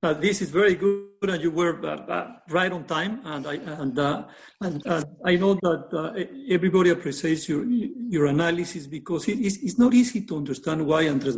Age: 50-69